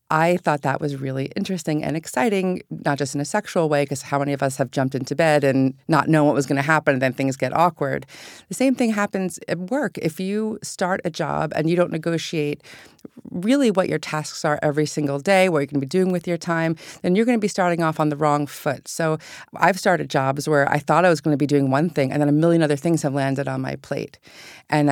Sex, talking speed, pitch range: female, 255 wpm, 145-180 Hz